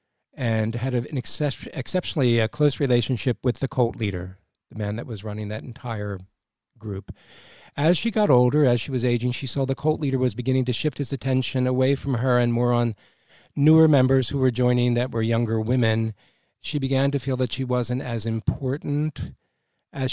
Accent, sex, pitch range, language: American, male, 115-135 Hz, English